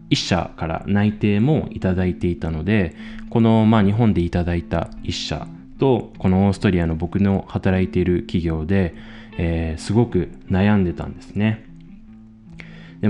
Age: 20-39